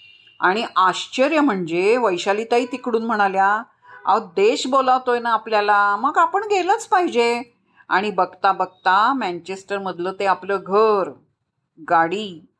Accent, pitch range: native, 195-275 Hz